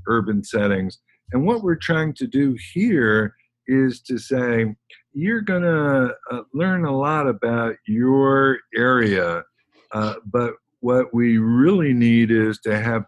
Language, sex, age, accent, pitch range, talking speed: English, male, 50-69, American, 105-135 Hz, 140 wpm